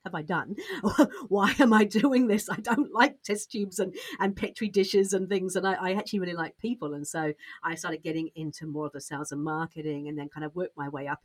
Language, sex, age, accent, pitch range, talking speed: English, female, 50-69, British, 150-195 Hz, 245 wpm